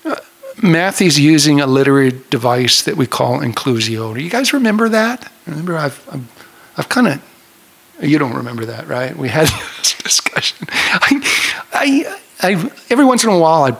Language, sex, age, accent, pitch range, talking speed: English, male, 50-69, American, 130-175 Hz, 165 wpm